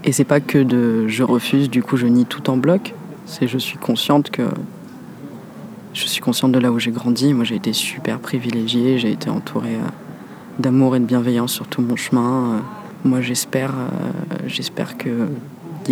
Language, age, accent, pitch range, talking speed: French, 20-39, French, 125-200 Hz, 185 wpm